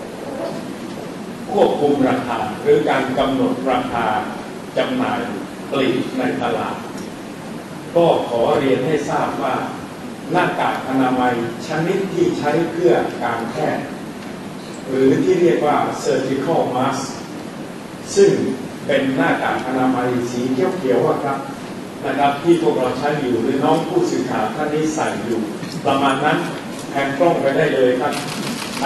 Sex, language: male, Thai